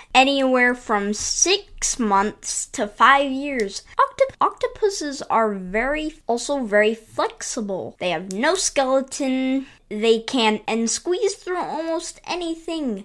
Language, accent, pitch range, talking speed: English, American, 215-285 Hz, 120 wpm